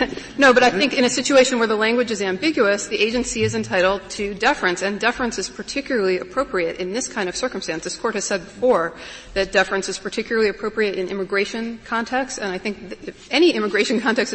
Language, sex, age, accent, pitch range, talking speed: English, female, 30-49, American, 185-230 Hz, 200 wpm